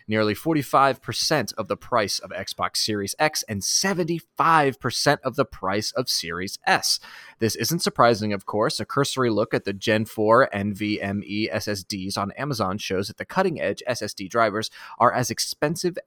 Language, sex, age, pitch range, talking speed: English, male, 30-49, 100-135 Hz, 155 wpm